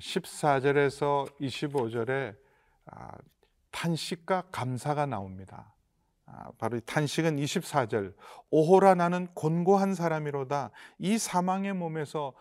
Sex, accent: male, native